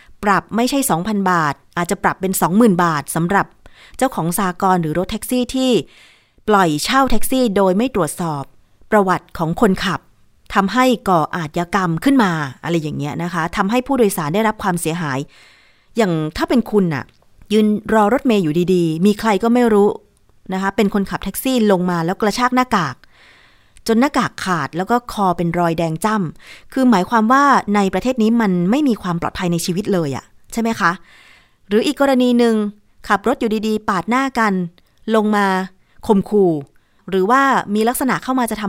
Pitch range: 175-235 Hz